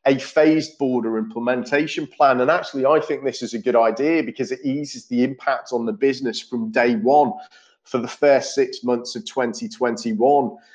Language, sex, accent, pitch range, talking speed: English, male, British, 125-170 Hz, 180 wpm